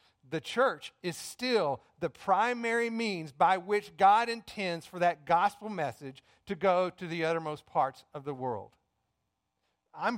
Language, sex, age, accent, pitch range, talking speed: English, male, 50-69, American, 125-185 Hz, 145 wpm